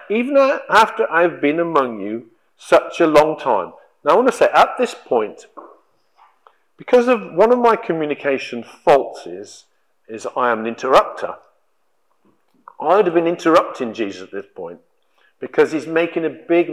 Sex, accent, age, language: male, British, 50-69, English